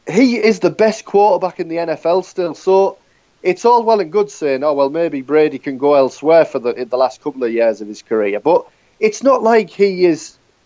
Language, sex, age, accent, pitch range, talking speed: English, male, 30-49, British, 135-205 Hz, 225 wpm